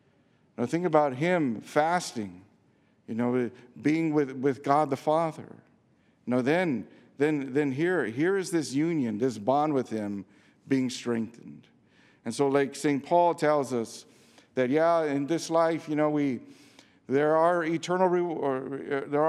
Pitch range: 120-160 Hz